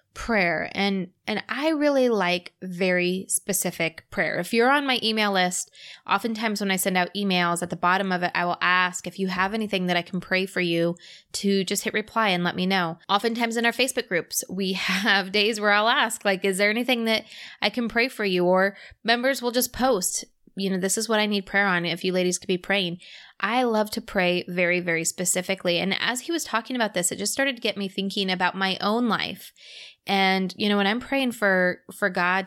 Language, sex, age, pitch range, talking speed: English, female, 20-39, 180-220 Hz, 225 wpm